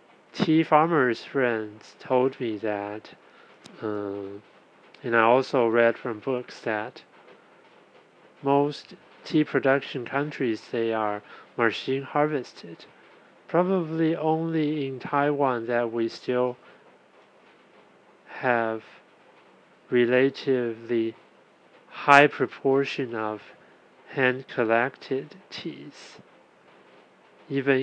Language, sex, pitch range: Chinese, male, 115-140 Hz